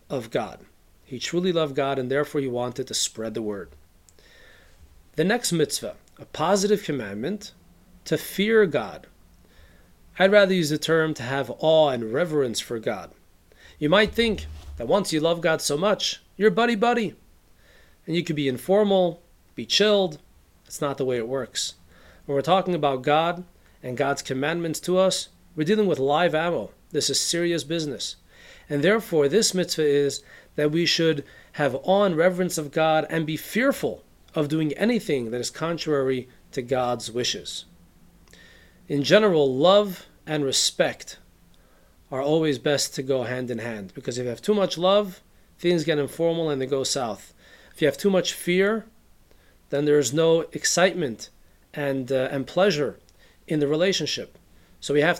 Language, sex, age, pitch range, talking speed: English, male, 40-59, 130-180 Hz, 165 wpm